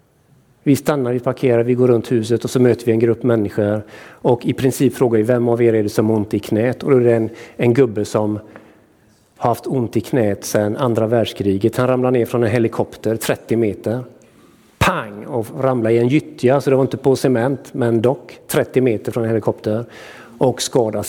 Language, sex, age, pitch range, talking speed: Swedish, male, 50-69, 110-155 Hz, 215 wpm